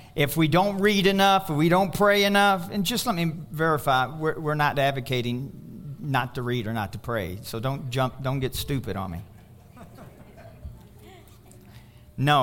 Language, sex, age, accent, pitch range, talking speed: English, male, 50-69, American, 115-190 Hz, 170 wpm